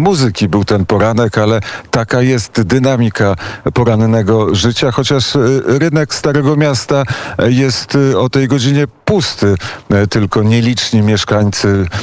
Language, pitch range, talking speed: Polish, 95-115 Hz, 110 wpm